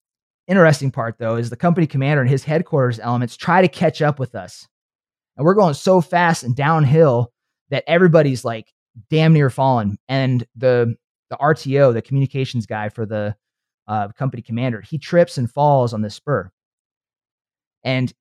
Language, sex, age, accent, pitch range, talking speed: English, male, 30-49, American, 125-160 Hz, 165 wpm